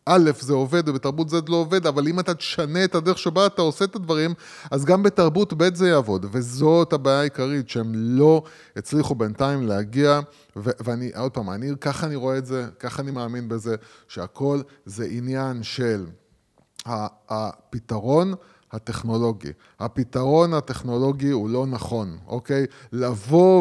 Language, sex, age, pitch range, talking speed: Hebrew, male, 20-39, 125-170 Hz, 150 wpm